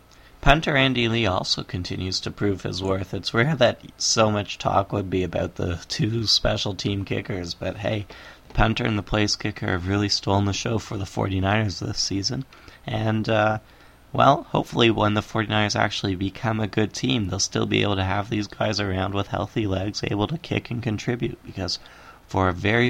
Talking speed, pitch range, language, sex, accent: 195 wpm, 95-115 Hz, English, male, American